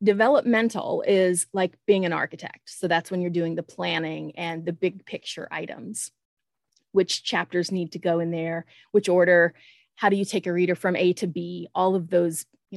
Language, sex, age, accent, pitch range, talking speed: English, female, 30-49, American, 170-200 Hz, 195 wpm